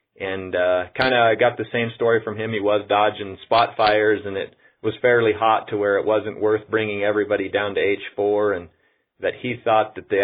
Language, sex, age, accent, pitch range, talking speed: English, male, 30-49, American, 95-120 Hz, 210 wpm